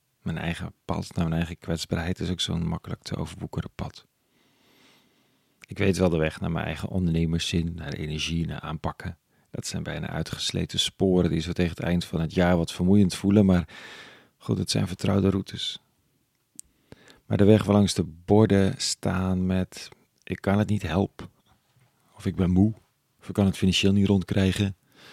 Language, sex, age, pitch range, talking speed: Dutch, male, 40-59, 85-100 Hz, 175 wpm